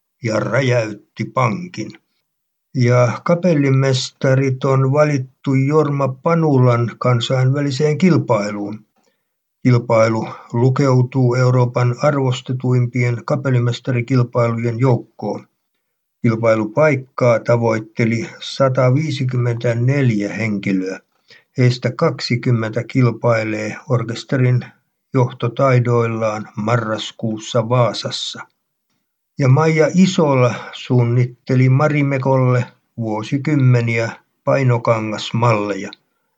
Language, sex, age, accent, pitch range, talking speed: Finnish, male, 60-79, native, 115-135 Hz, 60 wpm